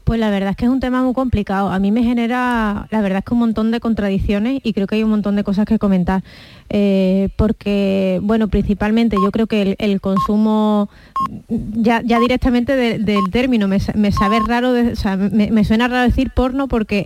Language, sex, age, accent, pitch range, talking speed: Spanish, female, 20-39, Spanish, 200-225 Hz, 205 wpm